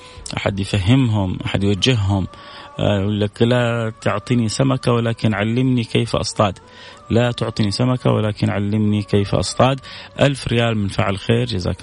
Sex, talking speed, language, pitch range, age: male, 130 wpm, Arabic, 95-115 Hz, 30-49